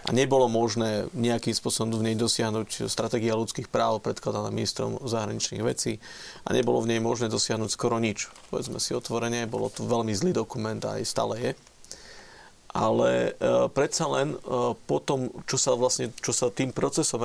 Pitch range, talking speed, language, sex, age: 115-130 Hz, 165 wpm, Slovak, male, 40-59